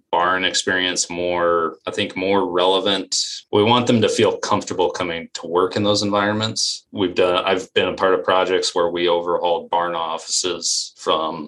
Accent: American